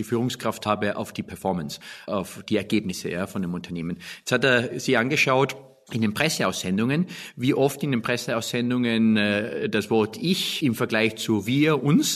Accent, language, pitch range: German, German, 115-150 Hz